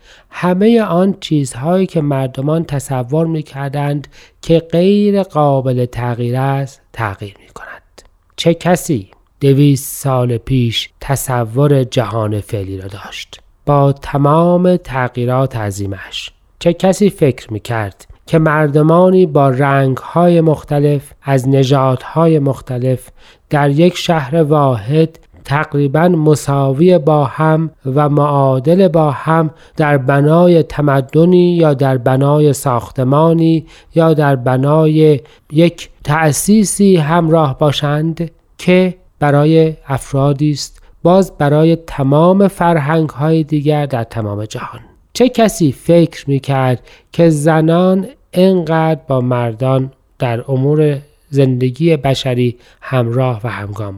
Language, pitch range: Persian, 130-165 Hz